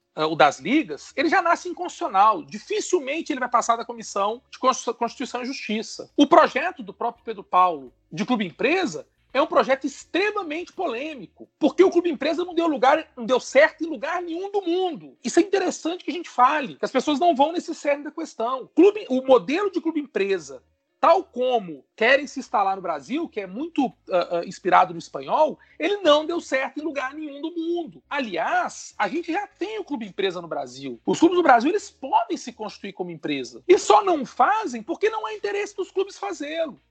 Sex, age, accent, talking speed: male, 40-59, Brazilian, 195 wpm